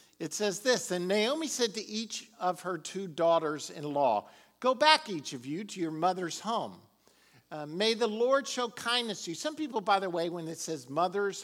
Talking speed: 200 wpm